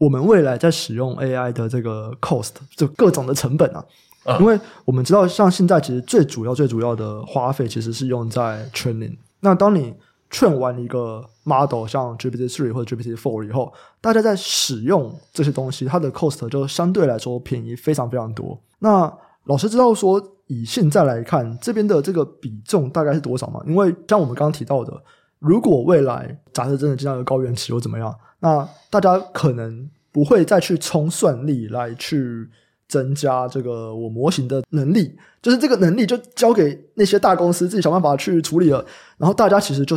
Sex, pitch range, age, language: male, 125-175 Hz, 20-39, Chinese